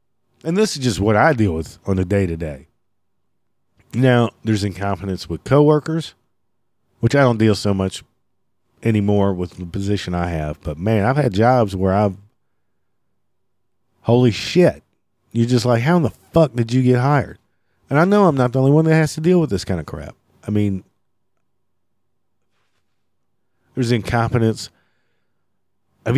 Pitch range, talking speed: 100-130 Hz, 165 wpm